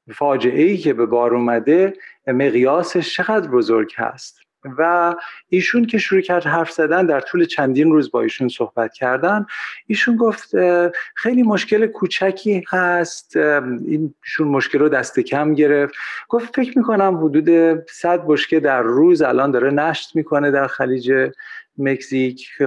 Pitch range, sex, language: 135-175 Hz, male, Persian